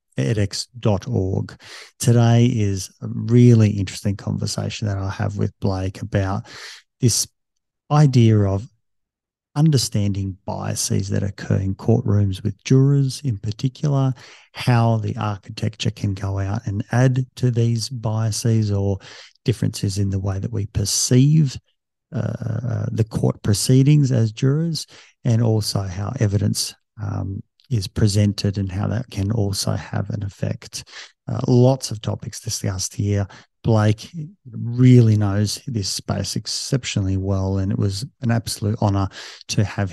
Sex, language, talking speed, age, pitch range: male, English, 130 wpm, 50-69, 100-120 Hz